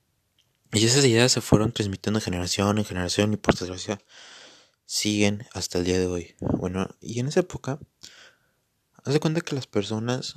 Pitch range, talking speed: 95-120 Hz, 170 wpm